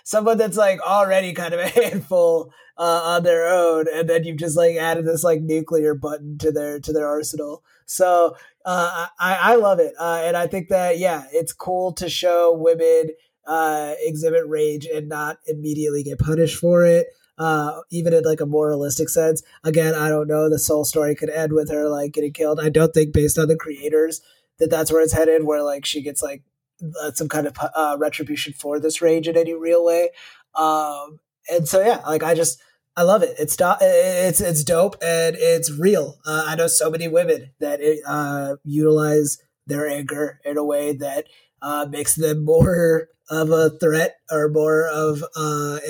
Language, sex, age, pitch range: English, male, 20-39, 150-165 Hz